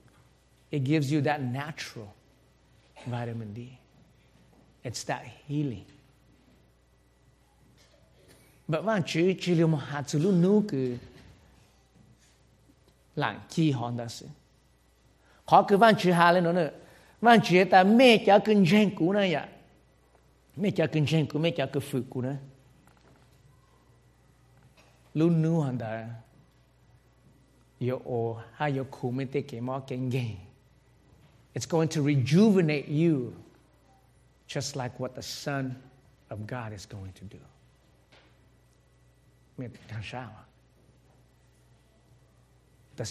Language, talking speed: English, 45 wpm